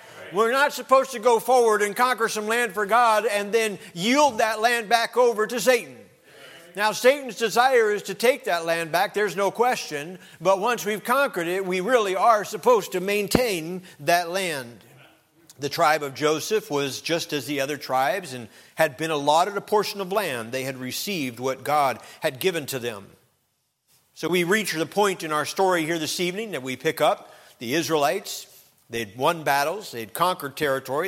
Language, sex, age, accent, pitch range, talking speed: English, male, 50-69, American, 145-210 Hz, 185 wpm